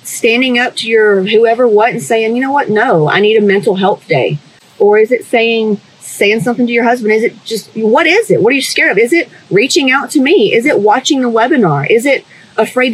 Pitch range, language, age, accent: 205-270 Hz, English, 30-49, American